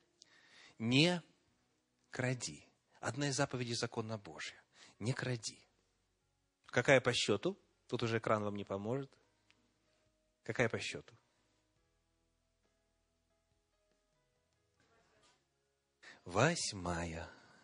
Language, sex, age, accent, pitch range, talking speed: Russian, male, 30-49, native, 105-140 Hz, 75 wpm